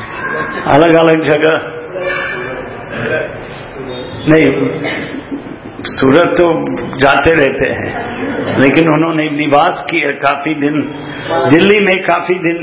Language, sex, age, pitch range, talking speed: English, male, 50-69, 145-170 Hz, 90 wpm